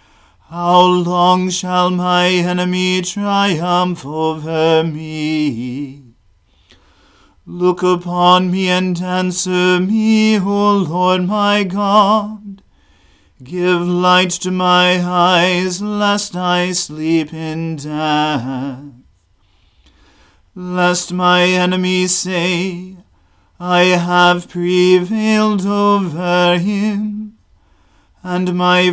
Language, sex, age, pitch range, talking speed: English, male, 40-59, 160-185 Hz, 80 wpm